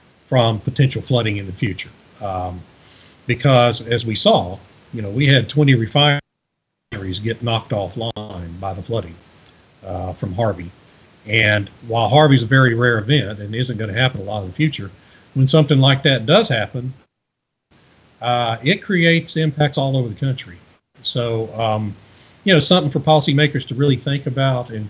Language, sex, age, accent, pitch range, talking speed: English, male, 40-59, American, 100-130 Hz, 165 wpm